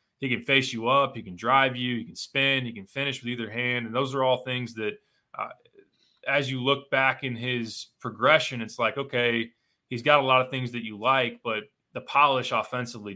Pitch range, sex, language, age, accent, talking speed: 110-125 Hz, male, English, 20-39, American, 220 wpm